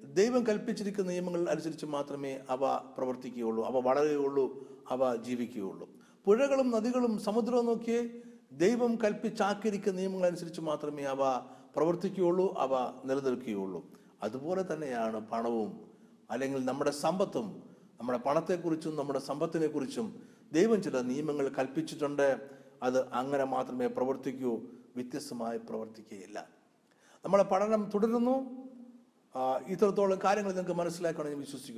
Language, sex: English, male